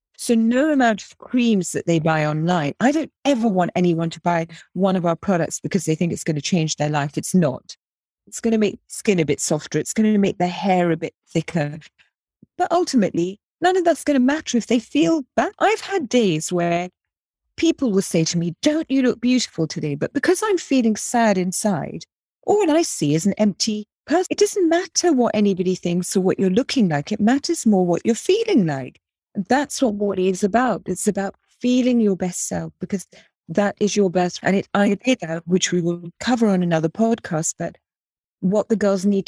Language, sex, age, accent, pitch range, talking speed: English, female, 40-59, British, 170-240 Hz, 210 wpm